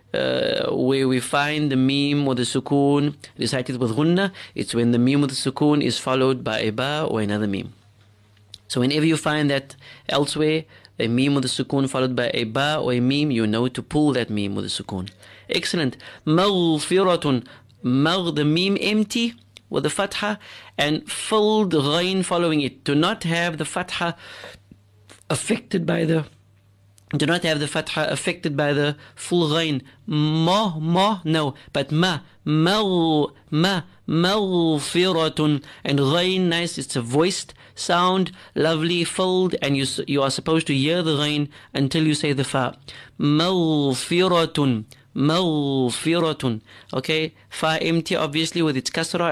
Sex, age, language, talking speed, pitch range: male, 30-49, English, 150 wpm, 130-170 Hz